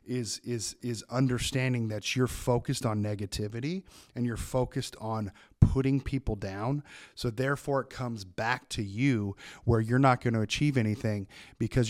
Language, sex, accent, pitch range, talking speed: English, male, American, 105-125 Hz, 155 wpm